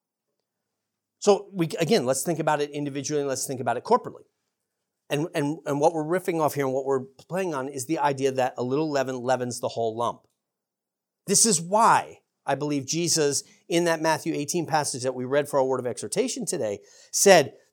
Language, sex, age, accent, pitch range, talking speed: English, male, 40-59, American, 140-205 Hz, 200 wpm